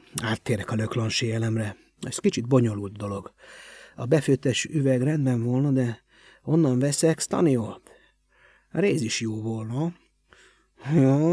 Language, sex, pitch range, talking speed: Hungarian, male, 120-165 Hz, 115 wpm